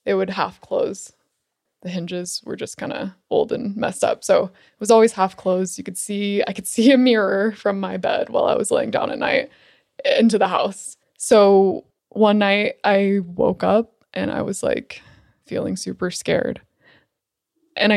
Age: 20-39